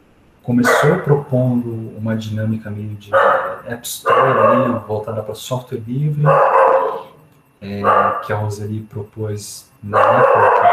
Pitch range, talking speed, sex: 105-135 Hz, 110 wpm, male